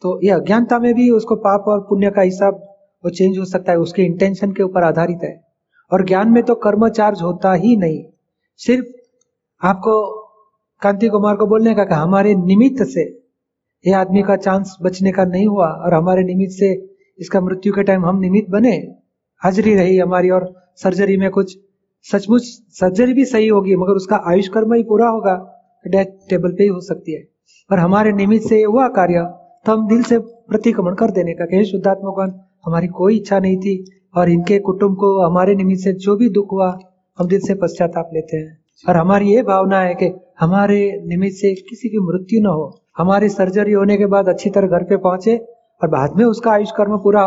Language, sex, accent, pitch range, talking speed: Hindi, male, native, 185-215 Hz, 195 wpm